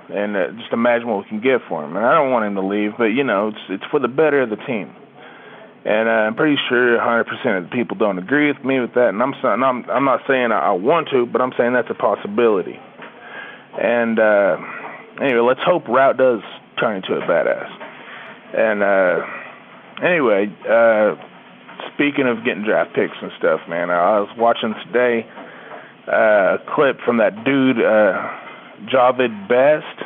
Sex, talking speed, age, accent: male, 190 wpm, 30-49, American